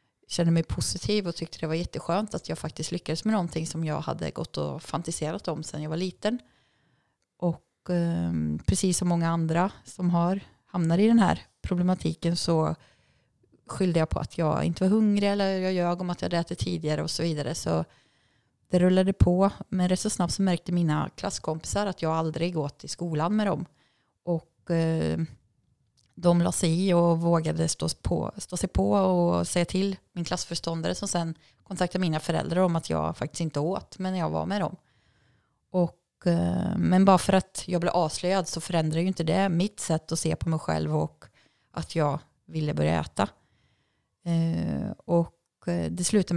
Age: 30-49